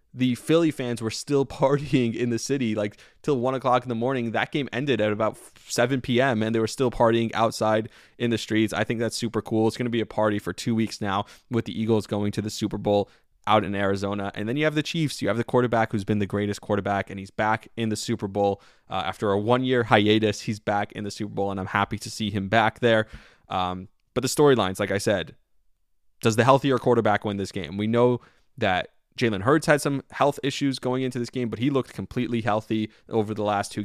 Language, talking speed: English, 240 wpm